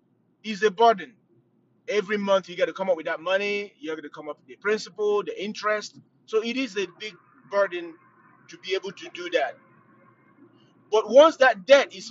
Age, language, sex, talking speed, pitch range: 30-49, English, male, 200 wpm, 190-240 Hz